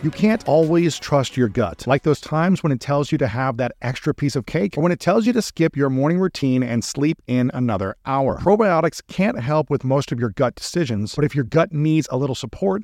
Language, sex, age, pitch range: English, male, 40-59, 130-170 Hz